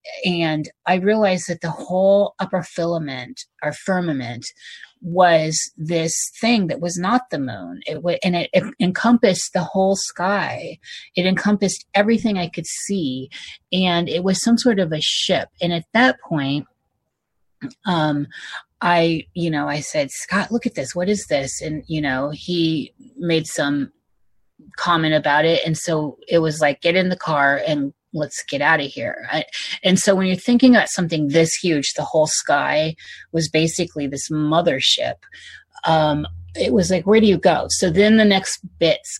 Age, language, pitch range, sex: 30-49, English, 155-190 Hz, female